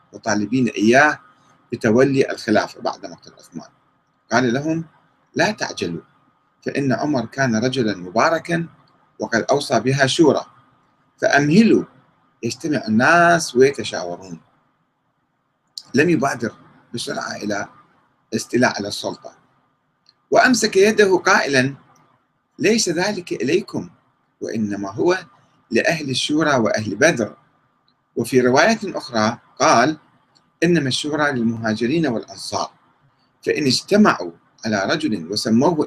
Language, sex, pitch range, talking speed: Arabic, male, 110-160 Hz, 95 wpm